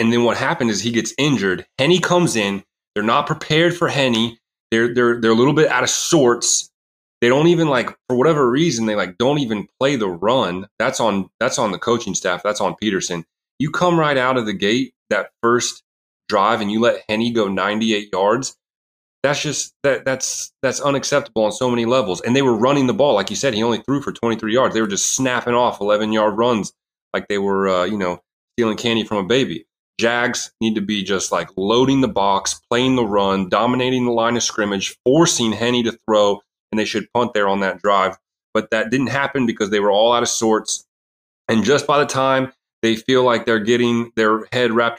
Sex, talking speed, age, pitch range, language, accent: male, 215 wpm, 30-49, 105-130 Hz, English, American